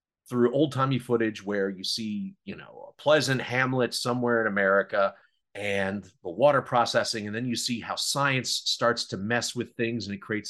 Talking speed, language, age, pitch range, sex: 185 wpm, English, 30-49, 105-135 Hz, male